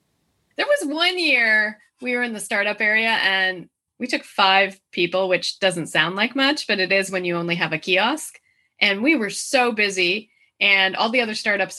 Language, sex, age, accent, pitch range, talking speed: English, female, 20-39, American, 185-250 Hz, 200 wpm